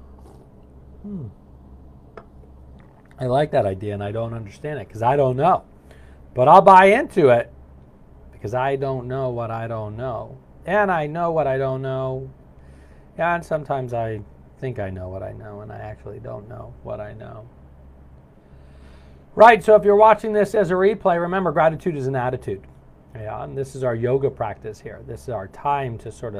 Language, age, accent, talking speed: English, 40-59, American, 175 wpm